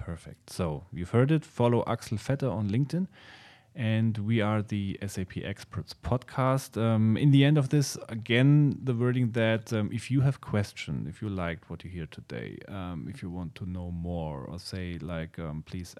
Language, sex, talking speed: English, male, 190 wpm